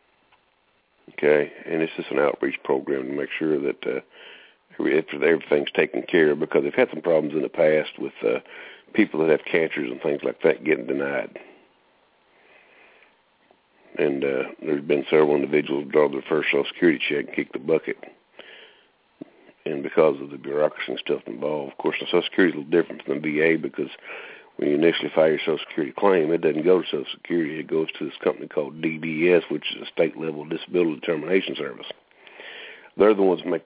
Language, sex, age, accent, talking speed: English, male, 60-79, American, 190 wpm